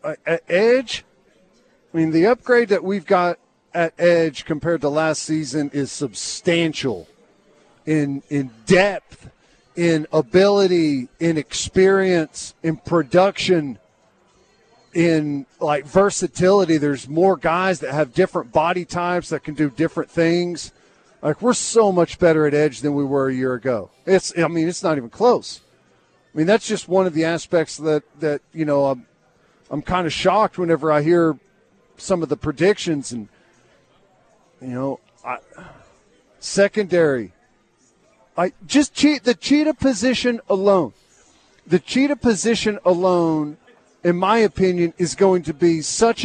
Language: English